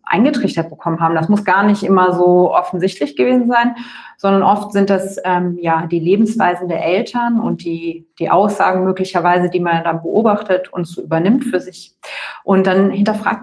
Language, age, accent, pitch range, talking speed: German, 30-49, German, 185-220 Hz, 175 wpm